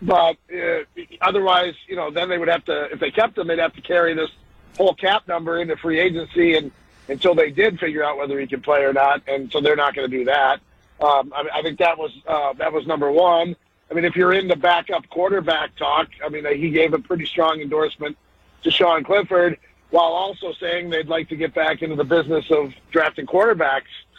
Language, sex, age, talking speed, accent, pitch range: English, male, 50-69, 225 wpm, American, 135-170 Hz